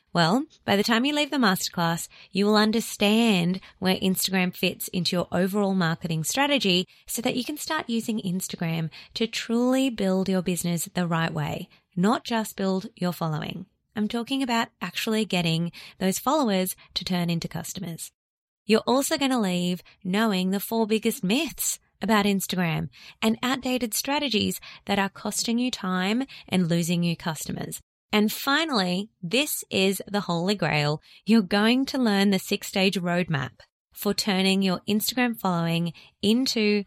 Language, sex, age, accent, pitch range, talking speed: English, female, 20-39, Australian, 180-230 Hz, 155 wpm